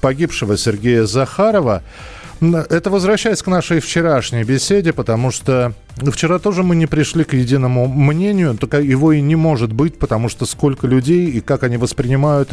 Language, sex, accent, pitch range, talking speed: Russian, male, native, 115-160 Hz, 160 wpm